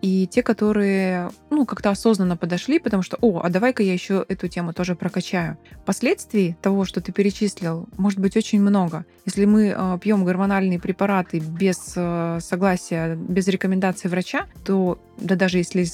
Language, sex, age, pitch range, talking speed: Russian, female, 20-39, 180-210 Hz, 160 wpm